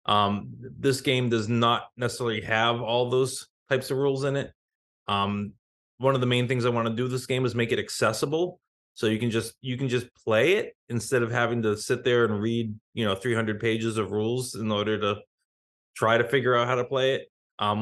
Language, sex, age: English, male, 20-39